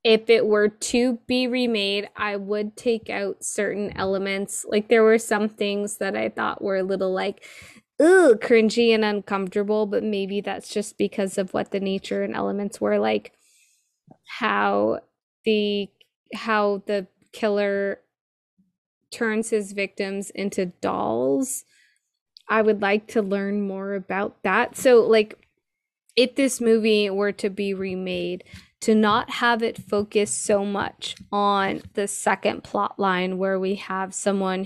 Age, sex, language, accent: 20-39, female, English, American